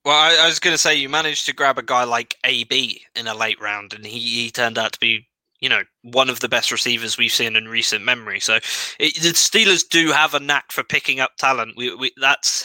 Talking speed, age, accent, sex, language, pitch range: 250 wpm, 20-39, British, male, English, 120-155 Hz